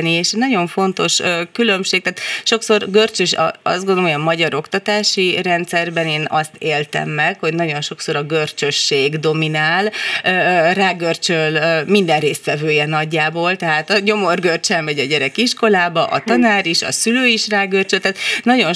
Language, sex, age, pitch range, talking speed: Hungarian, female, 30-49, 160-195 Hz, 140 wpm